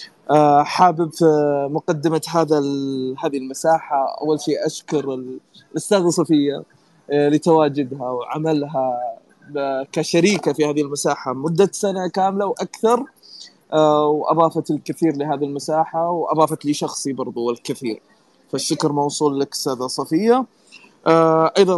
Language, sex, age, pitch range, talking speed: Arabic, male, 20-39, 140-170 Hz, 95 wpm